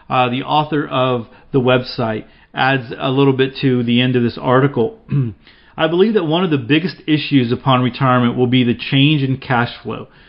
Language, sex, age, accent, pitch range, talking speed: English, male, 40-59, American, 125-150 Hz, 190 wpm